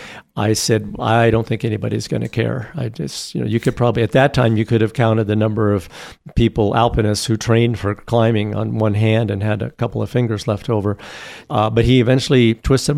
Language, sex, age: English, male, 50-69